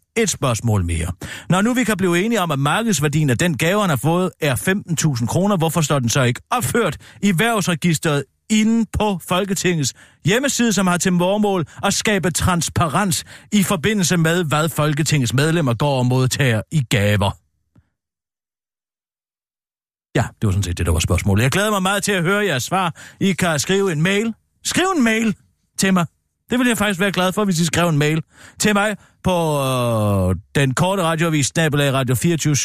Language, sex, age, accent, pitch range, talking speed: Danish, male, 40-59, native, 130-190 Hz, 180 wpm